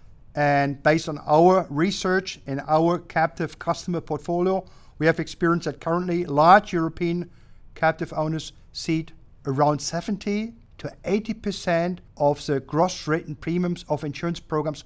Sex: male